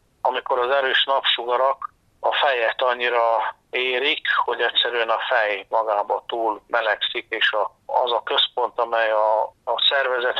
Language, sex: Hungarian, male